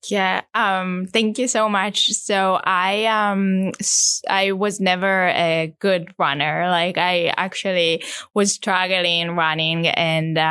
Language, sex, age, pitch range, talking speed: English, female, 10-29, 175-195 Hz, 125 wpm